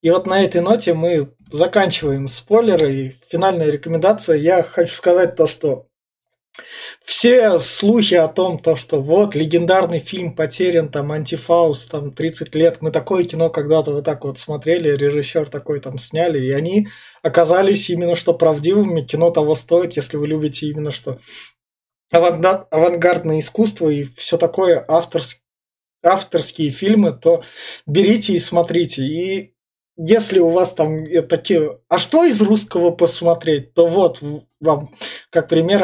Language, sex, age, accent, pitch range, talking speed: Russian, male, 20-39, native, 155-185 Hz, 140 wpm